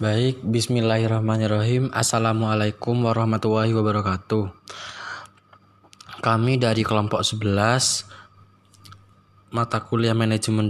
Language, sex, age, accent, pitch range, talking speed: Indonesian, male, 20-39, native, 105-120 Hz, 65 wpm